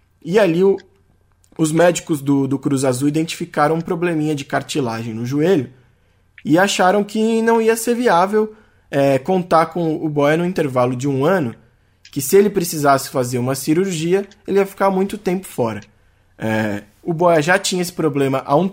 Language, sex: Portuguese, male